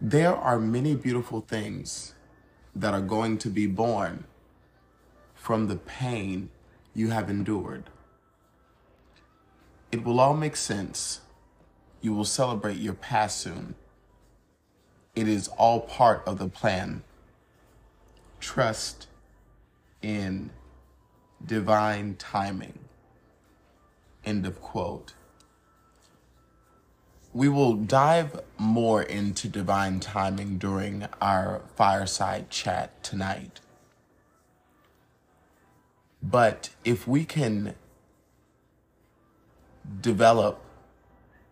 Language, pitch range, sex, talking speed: English, 95-115 Hz, male, 85 wpm